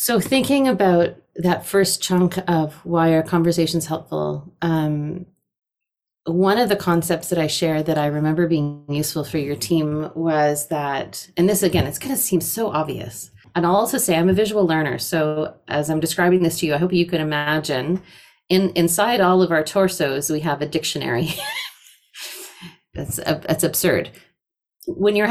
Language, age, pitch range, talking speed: English, 30-49, 150-180 Hz, 175 wpm